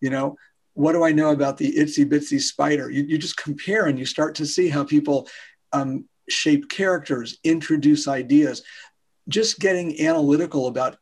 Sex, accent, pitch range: male, American, 140-190 Hz